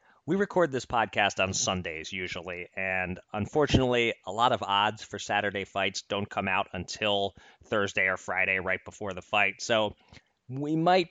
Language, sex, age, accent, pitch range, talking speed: English, male, 30-49, American, 100-130 Hz, 160 wpm